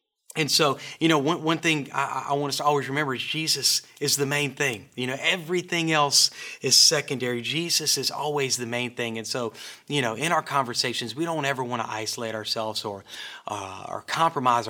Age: 30-49